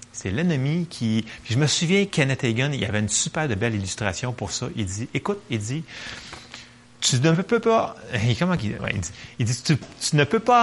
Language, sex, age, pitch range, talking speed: French, male, 30-49, 110-160 Hz, 205 wpm